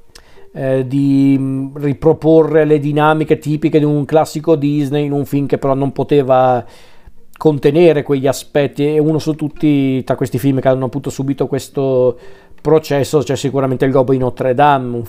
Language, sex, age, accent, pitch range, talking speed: Italian, male, 40-59, native, 130-155 Hz, 160 wpm